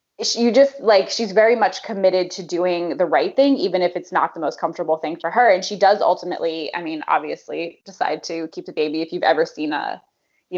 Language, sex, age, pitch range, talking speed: English, female, 20-39, 165-195 Hz, 225 wpm